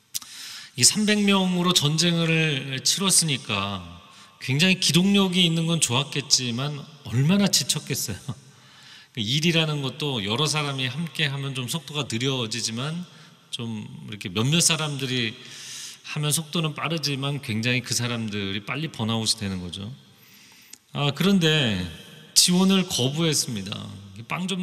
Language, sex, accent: Korean, male, native